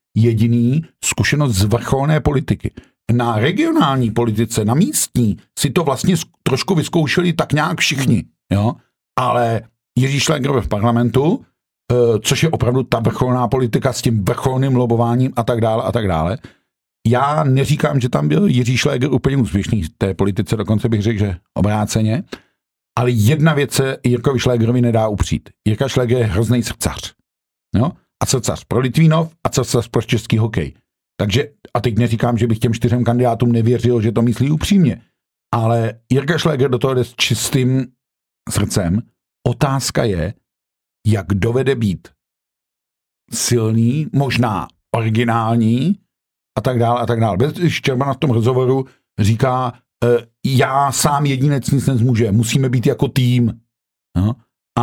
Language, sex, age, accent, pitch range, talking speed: Czech, male, 50-69, native, 115-135 Hz, 140 wpm